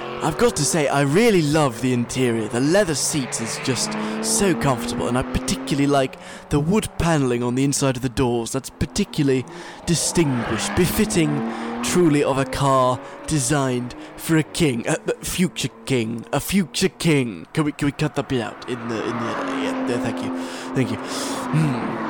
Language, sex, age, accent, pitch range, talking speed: English, male, 20-39, British, 120-155 Hz, 180 wpm